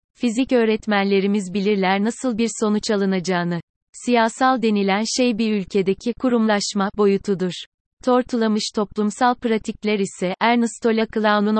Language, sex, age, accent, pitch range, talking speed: Turkish, female, 30-49, native, 195-225 Hz, 110 wpm